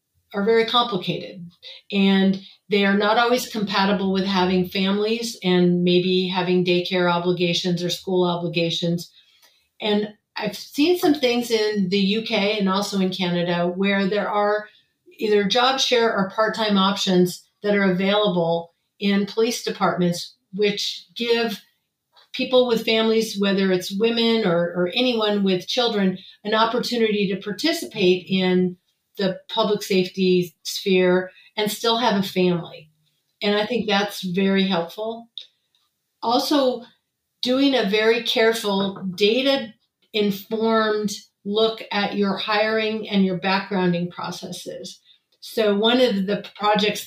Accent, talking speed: American, 125 wpm